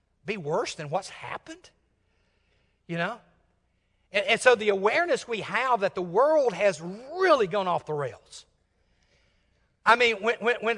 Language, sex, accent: English, male, American